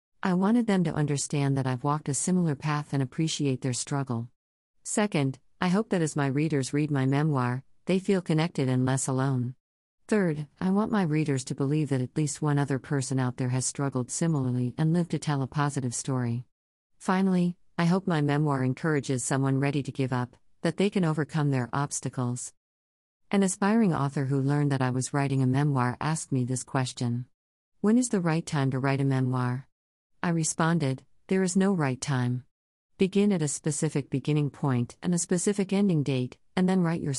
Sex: female